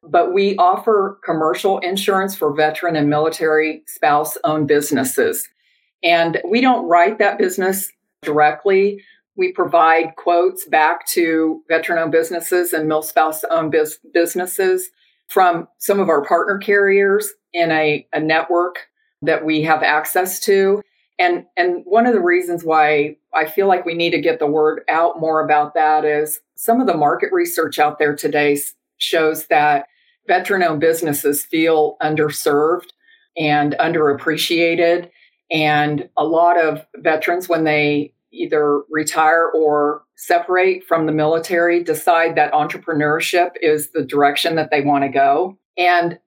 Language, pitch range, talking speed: English, 155-185 Hz, 140 wpm